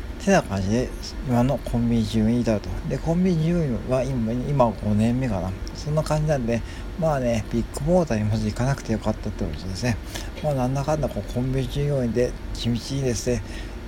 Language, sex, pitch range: Japanese, male, 95-130 Hz